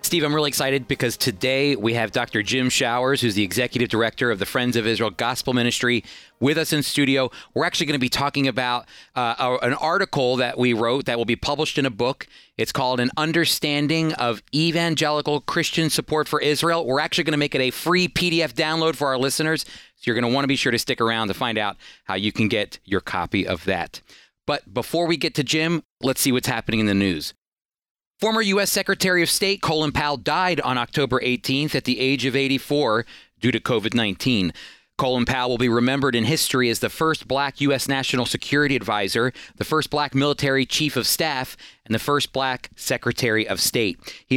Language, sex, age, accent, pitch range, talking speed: English, male, 30-49, American, 120-150 Hz, 205 wpm